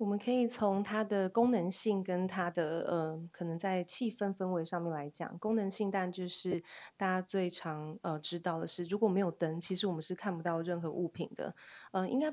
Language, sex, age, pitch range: Chinese, female, 20-39, 170-205 Hz